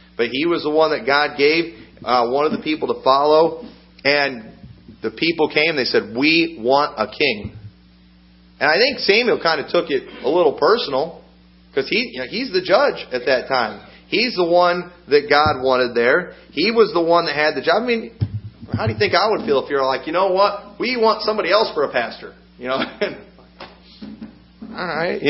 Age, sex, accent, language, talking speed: 40-59, male, American, English, 205 wpm